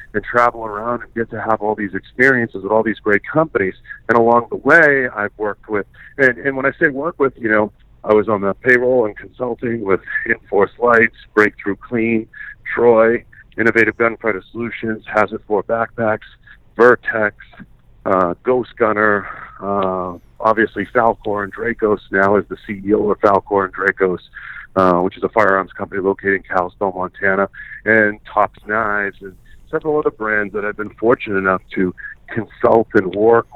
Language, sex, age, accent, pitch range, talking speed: English, male, 50-69, American, 100-115 Hz, 165 wpm